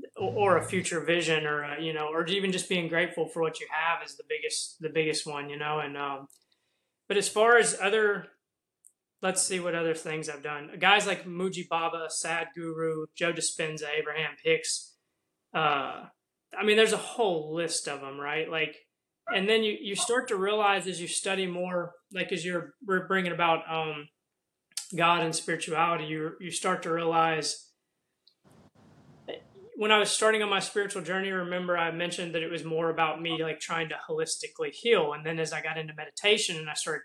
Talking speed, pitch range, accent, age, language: 190 wpm, 155-190 Hz, American, 20-39, English